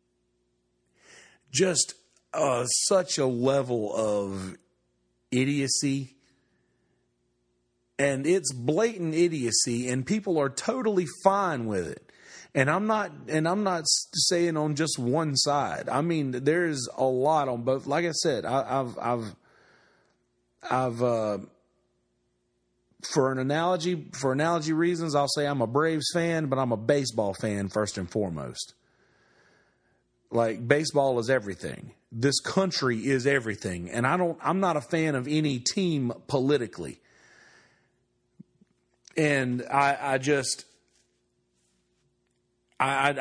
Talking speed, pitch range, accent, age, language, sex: 120 wpm, 105-150 Hz, American, 40-59, English, male